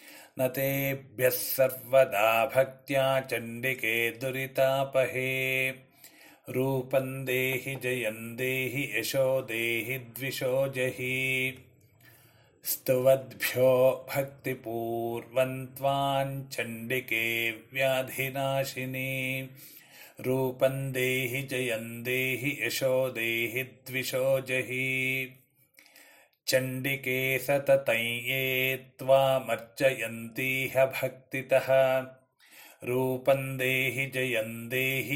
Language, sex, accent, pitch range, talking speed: Kannada, male, native, 125-135 Hz, 30 wpm